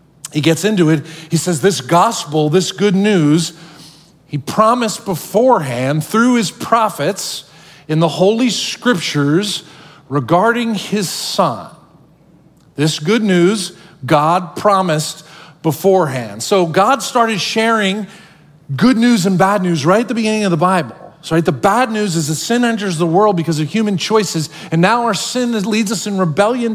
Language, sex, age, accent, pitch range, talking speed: English, male, 40-59, American, 170-225 Hz, 155 wpm